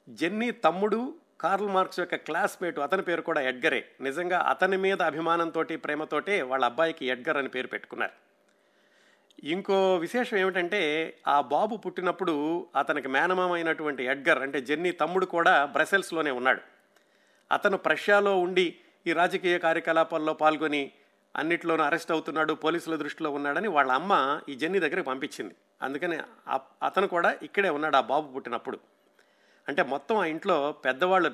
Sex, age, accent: male, 50-69, native